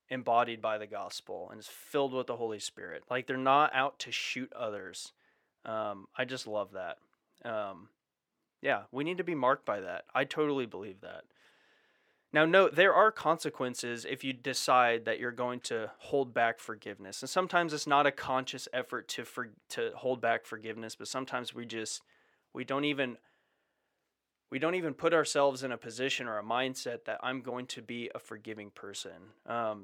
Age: 30-49